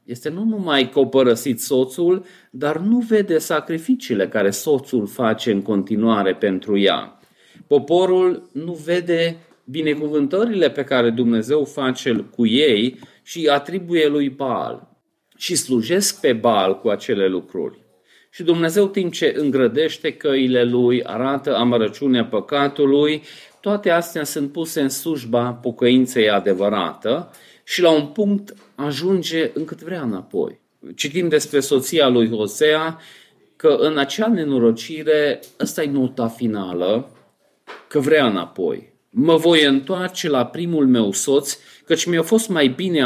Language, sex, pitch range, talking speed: Romanian, male, 125-170 Hz, 125 wpm